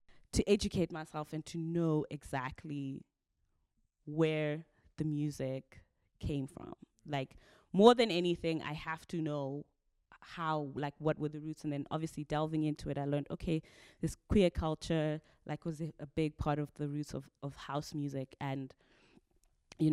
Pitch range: 140-165 Hz